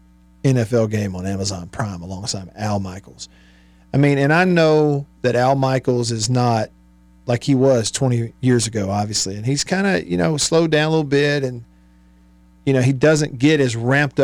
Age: 50-69